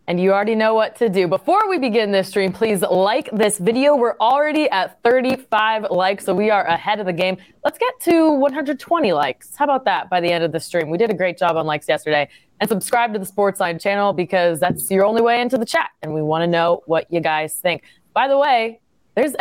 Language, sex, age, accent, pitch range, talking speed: English, female, 20-39, American, 175-230 Hz, 240 wpm